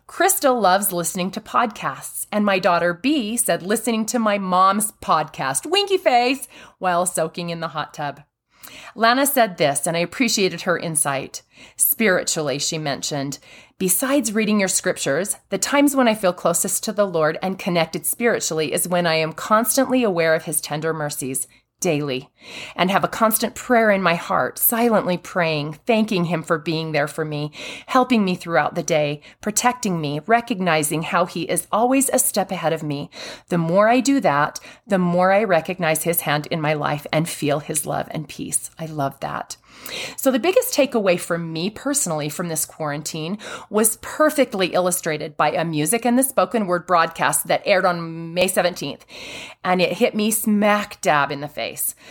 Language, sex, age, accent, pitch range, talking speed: English, female, 30-49, American, 160-230 Hz, 175 wpm